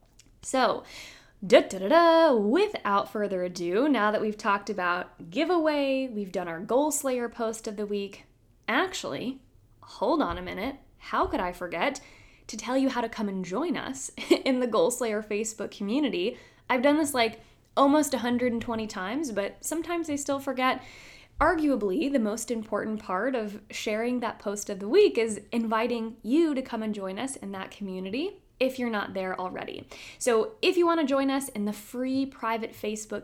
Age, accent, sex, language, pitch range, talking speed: 20-39, American, female, English, 200-265 Hz, 170 wpm